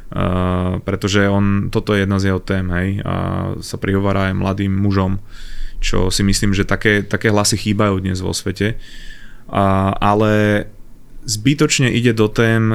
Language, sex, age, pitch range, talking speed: Slovak, male, 20-39, 100-110 Hz, 155 wpm